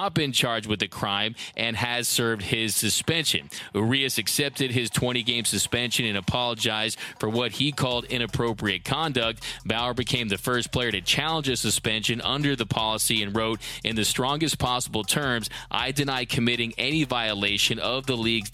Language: English